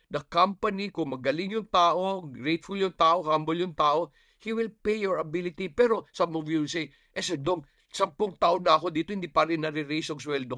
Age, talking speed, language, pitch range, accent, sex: 50-69, 205 wpm, English, 140-190 Hz, Filipino, male